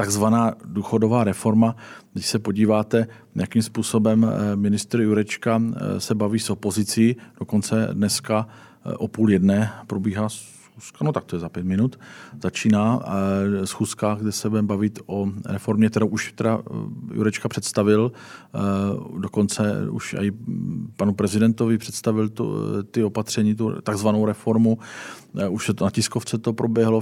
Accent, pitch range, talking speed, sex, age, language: native, 95-110 Hz, 130 wpm, male, 40-59, Czech